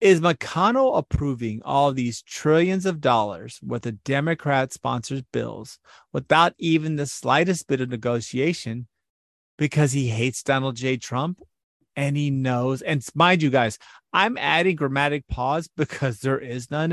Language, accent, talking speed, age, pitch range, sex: English, American, 145 wpm, 30-49, 120-160 Hz, male